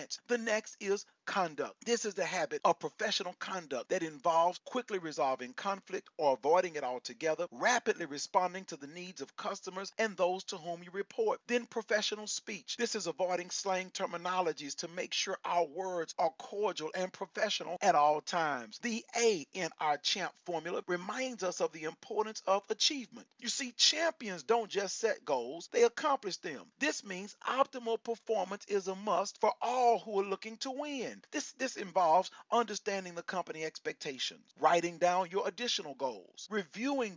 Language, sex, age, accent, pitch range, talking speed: English, male, 40-59, American, 180-235 Hz, 165 wpm